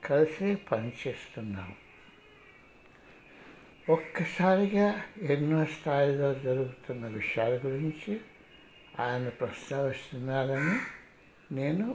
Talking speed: 55 wpm